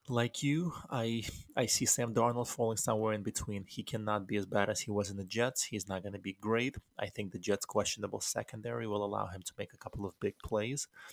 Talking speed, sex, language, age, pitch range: 235 wpm, male, English, 30-49, 105-120 Hz